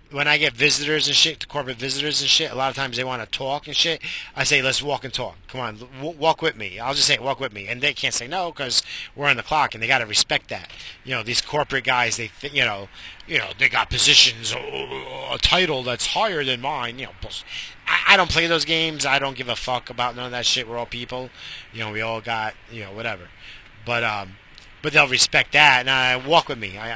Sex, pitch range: male, 115-145 Hz